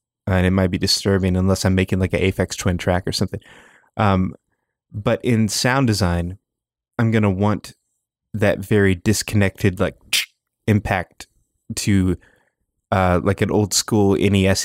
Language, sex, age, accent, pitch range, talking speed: English, male, 20-39, American, 95-105 Hz, 145 wpm